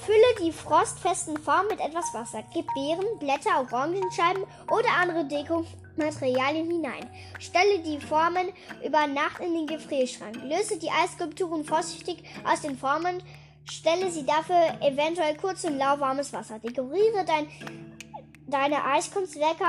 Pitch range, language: 285-360 Hz, German